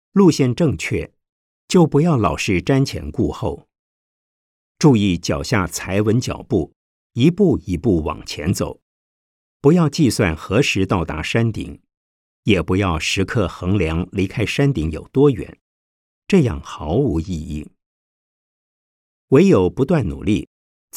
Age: 50-69